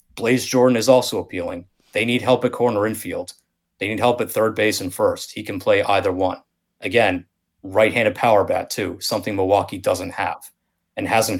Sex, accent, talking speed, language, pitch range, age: male, American, 185 wpm, English, 105-130 Hz, 30-49